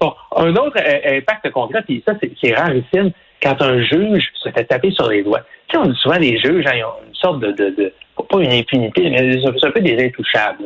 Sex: male